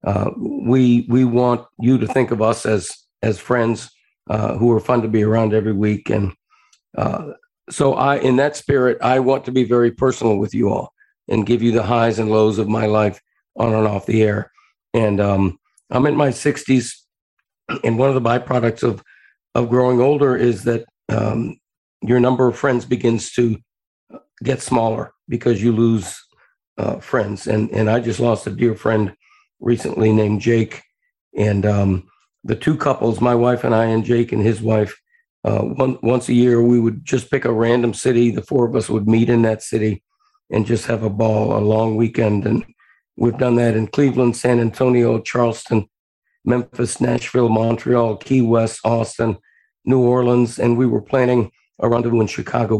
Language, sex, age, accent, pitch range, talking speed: English, male, 50-69, American, 110-125 Hz, 185 wpm